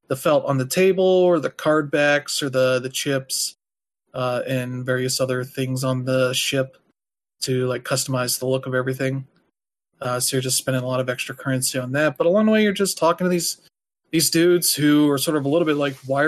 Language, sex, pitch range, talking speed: English, male, 130-145 Hz, 220 wpm